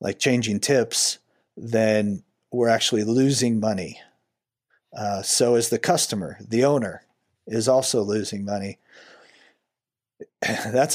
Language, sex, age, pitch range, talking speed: English, male, 40-59, 110-130 Hz, 110 wpm